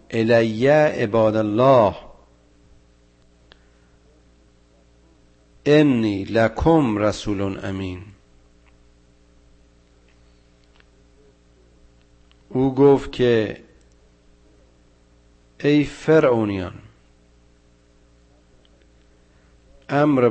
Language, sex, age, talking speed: Persian, male, 50-69, 40 wpm